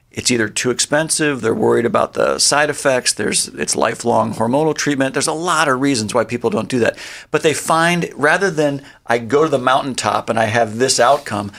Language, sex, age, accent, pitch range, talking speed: English, male, 50-69, American, 115-145 Hz, 205 wpm